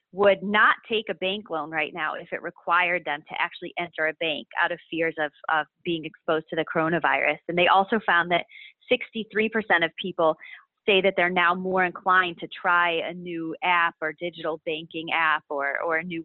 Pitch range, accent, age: 165-185 Hz, American, 30-49